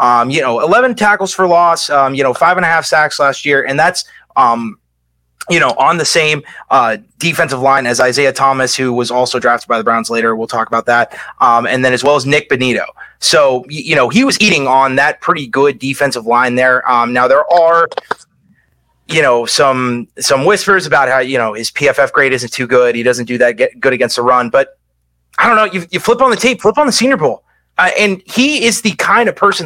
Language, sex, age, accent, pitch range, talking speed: English, male, 30-49, American, 125-185 Hz, 230 wpm